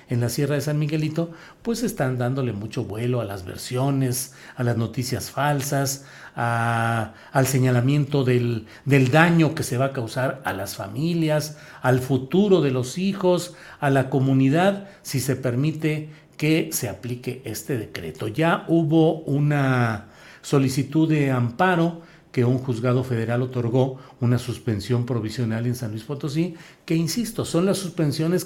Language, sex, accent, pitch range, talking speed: Spanish, male, Mexican, 125-165 Hz, 150 wpm